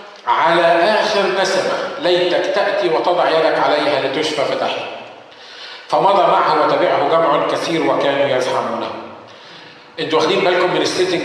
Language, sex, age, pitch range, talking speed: Arabic, male, 50-69, 170-200 Hz, 115 wpm